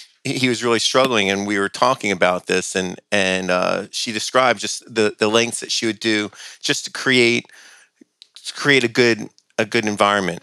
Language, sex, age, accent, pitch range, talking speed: English, male, 40-59, American, 95-110 Hz, 190 wpm